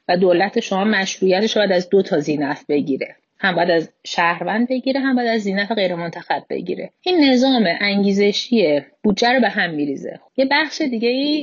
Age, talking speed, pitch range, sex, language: 30-49, 175 wpm, 185-245 Hz, female, Persian